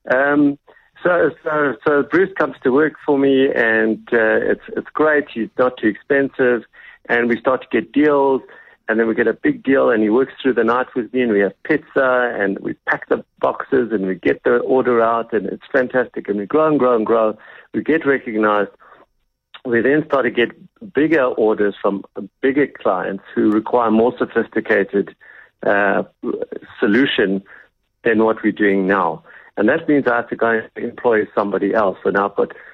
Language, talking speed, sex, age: English, 190 wpm, male, 50-69